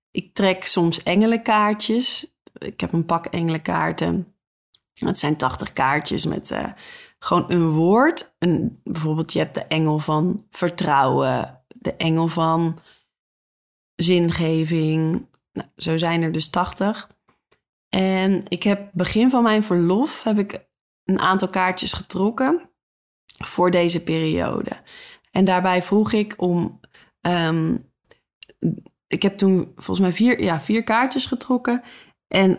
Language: Dutch